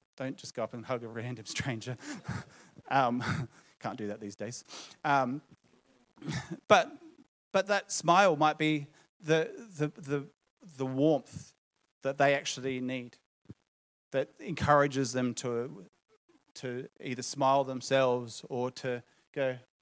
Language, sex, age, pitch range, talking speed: English, male, 30-49, 130-155 Hz, 125 wpm